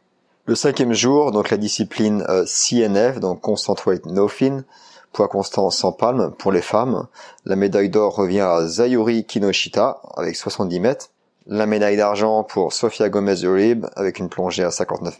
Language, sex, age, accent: French, male, 30-49, French